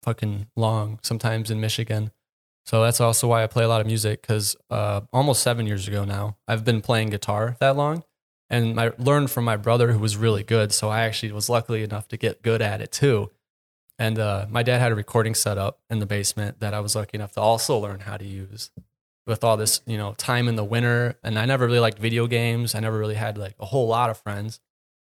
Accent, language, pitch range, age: American, English, 110-120 Hz, 20-39